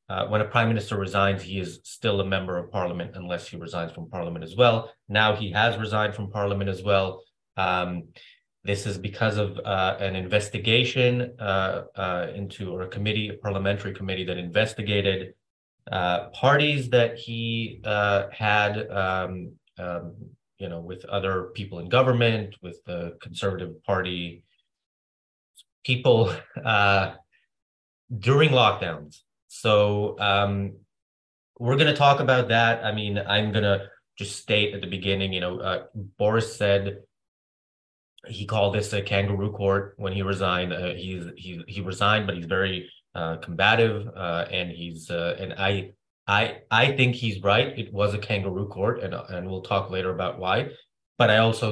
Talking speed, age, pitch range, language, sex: 160 wpm, 30-49, 90-110 Hz, English, male